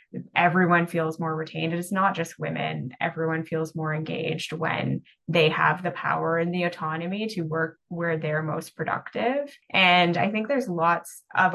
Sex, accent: female, American